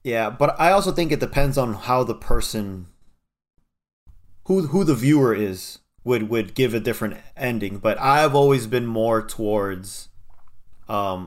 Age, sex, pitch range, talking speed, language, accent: 30-49, male, 100-130 Hz, 155 wpm, English, American